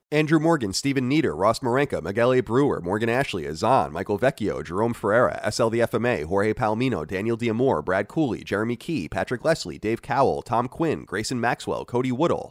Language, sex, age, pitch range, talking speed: English, male, 30-49, 115-140 Hz, 175 wpm